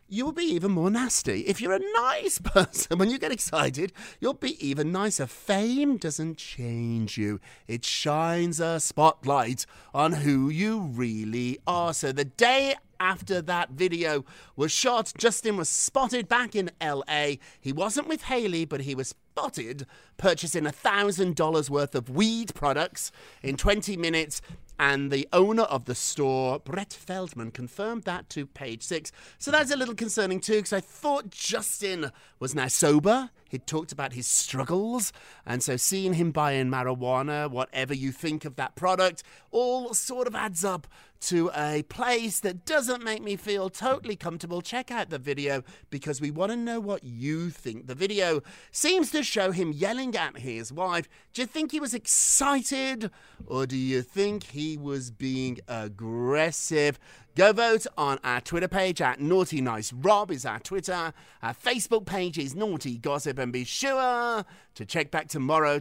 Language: English